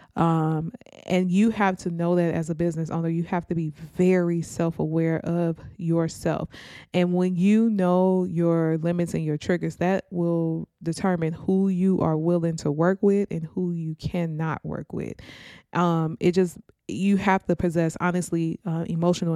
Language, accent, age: English, American, 20-39